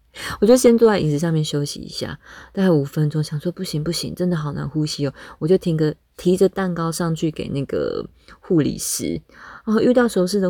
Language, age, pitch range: Chinese, 20-39, 155-210 Hz